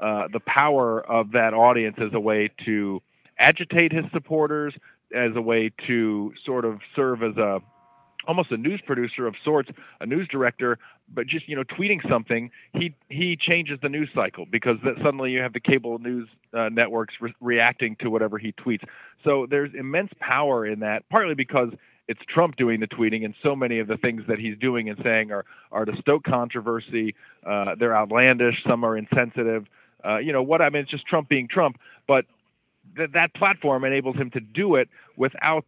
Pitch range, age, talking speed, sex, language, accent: 115-145 Hz, 40-59, 185 wpm, male, English, American